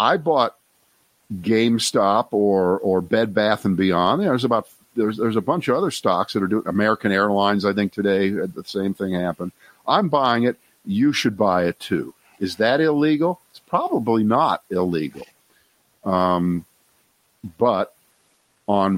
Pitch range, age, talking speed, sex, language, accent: 95-115 Hz, 50-69, 155 wpm, male, English, American